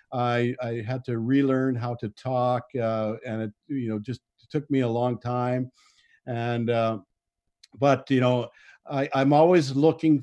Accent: American